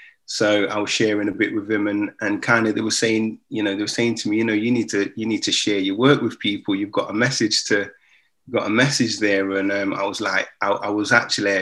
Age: 20-39